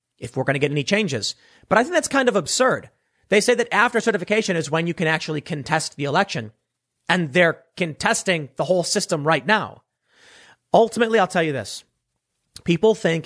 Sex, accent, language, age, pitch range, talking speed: male, American, English, 30-49, 150-215 Hz, 190 wpm